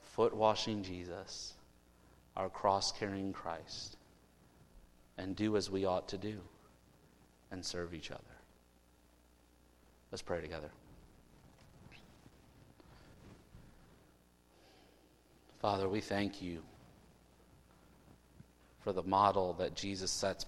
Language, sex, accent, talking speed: English, male, American, 90 wpm